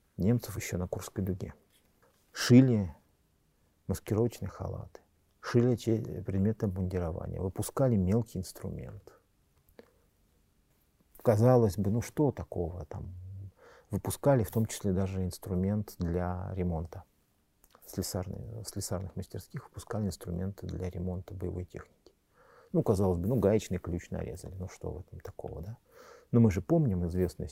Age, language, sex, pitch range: 50-69, Russian, male, 90-110 Hz